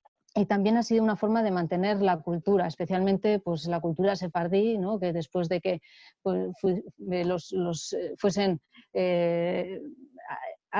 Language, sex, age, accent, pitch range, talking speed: Spanish, female, 30-49, Spanish, 175-200 Hz, 145 wpm